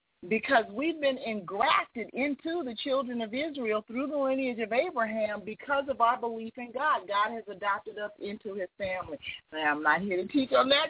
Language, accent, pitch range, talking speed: English, American, 200-275 Hz, 185 wpm